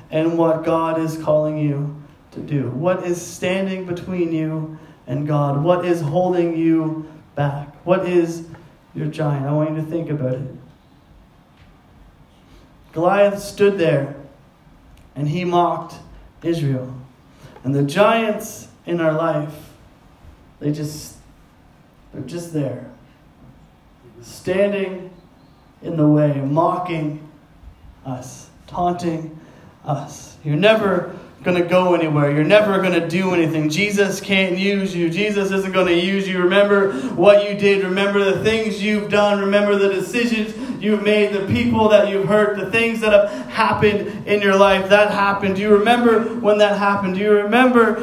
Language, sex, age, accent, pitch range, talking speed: English, male, 30-49, American, 155-205 Hz, 145 wpm